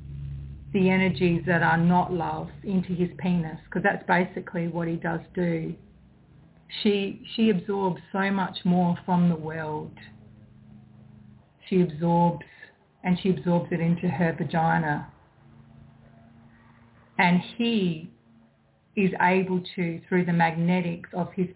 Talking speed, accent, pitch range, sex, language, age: 120 wpm, Australian, 165-190 Hz, female, English, 40-59